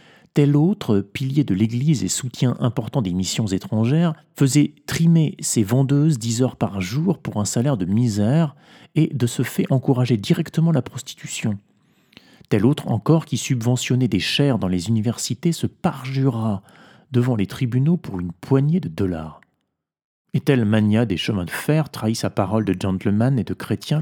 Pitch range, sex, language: 105-145 Hz, male, French